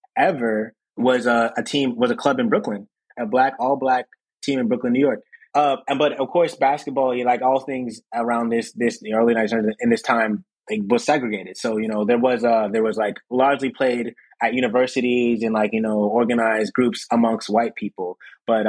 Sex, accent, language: male, American, English